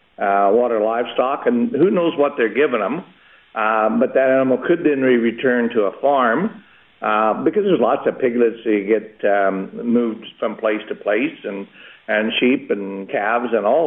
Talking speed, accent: 180 wpm, American